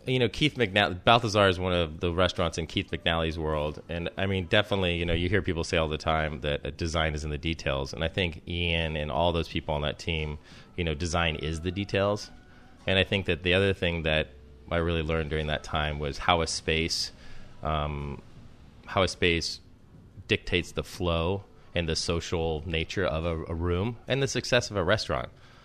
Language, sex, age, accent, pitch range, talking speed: English, male, 30-49, American, 80-95 Hz, 210 wpm